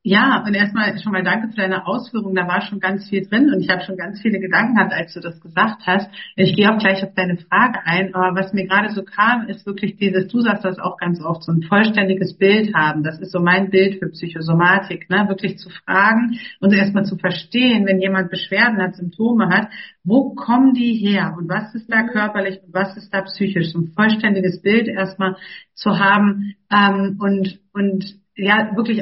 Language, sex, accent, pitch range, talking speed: German, female, German, 185-215 Hz, 215 wpm